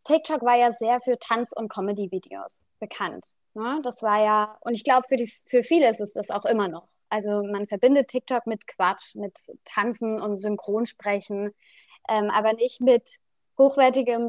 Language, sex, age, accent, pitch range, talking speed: German, female, 20-39, German, 210-255 Hz, 170 wpm